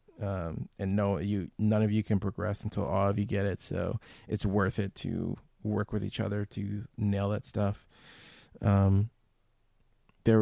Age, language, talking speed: 20-39, English, 175 wpm